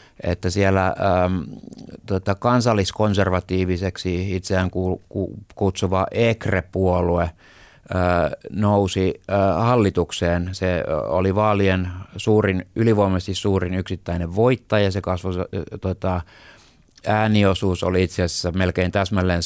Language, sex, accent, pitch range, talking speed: Finnish, male, native, 90-105 Hz, 85 wpm